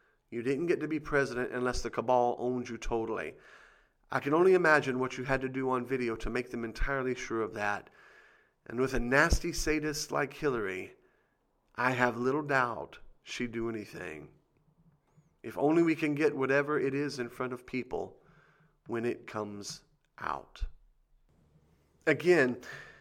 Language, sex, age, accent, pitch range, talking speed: English, male, 40-59, American, 120-150 Hz, 160 wpm